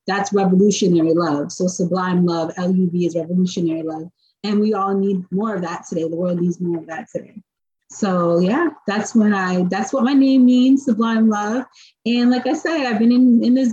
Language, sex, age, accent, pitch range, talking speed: English, female, 30-49, American, 190-235 Hz, 190 wpm